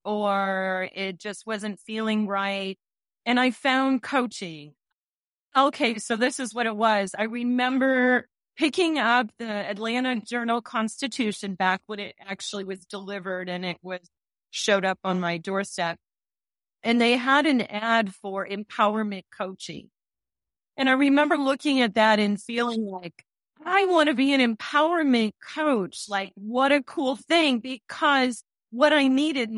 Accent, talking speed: American, 145 wpm